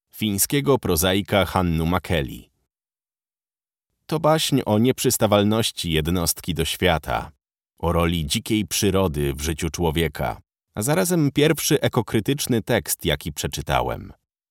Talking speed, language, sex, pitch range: 105 wpm, Polish, male, 85-115 Hz